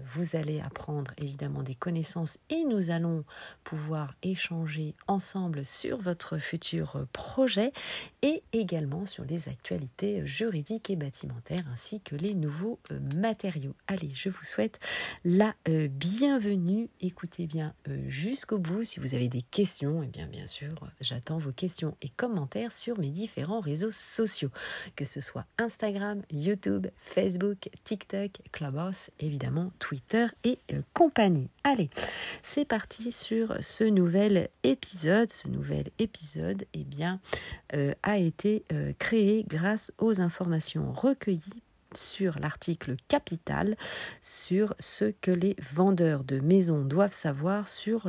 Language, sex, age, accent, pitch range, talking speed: French, female, 40-59, French, 150-210 Hz, 130 wpm